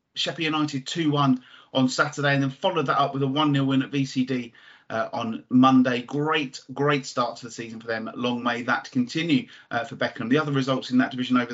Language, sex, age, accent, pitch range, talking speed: English, male, 30-49, British, 125-145 Hz, 215 wpm